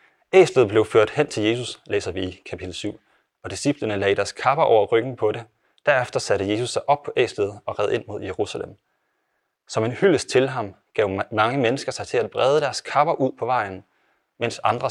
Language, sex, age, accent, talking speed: Danish, male, 30-49, native, 205 wpm